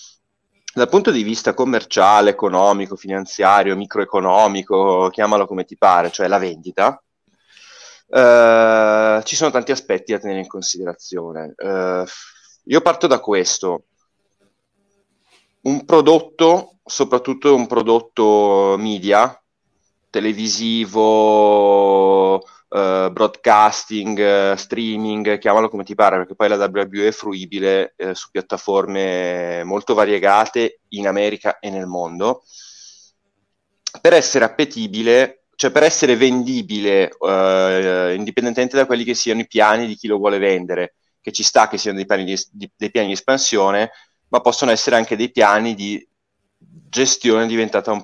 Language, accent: Italian, native